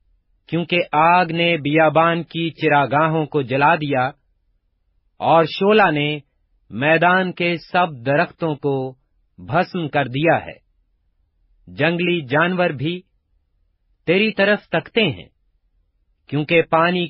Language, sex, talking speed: Urdu, male, 105 wpm